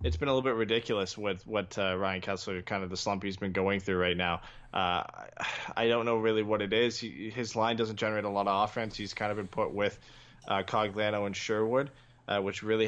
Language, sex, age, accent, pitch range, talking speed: English, male, 20-39, American, 100-120 Hz, 240 wpm